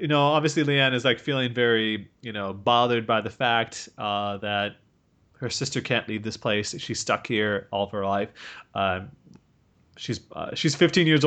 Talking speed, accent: 185 wpm, American